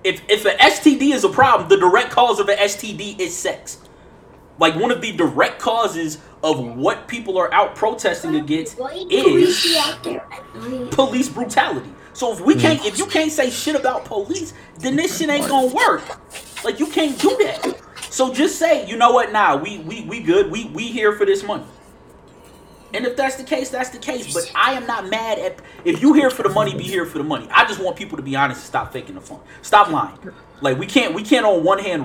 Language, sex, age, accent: English, male, 20-39, American